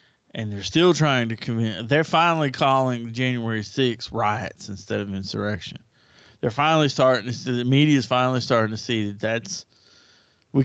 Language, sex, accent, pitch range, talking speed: English, male, American, 110-150 Hz, 170 wpm